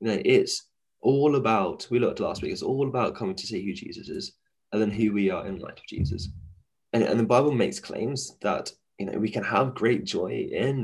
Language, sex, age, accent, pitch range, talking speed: English, male, 20-39, British, 105-130 Hz, 235 wpm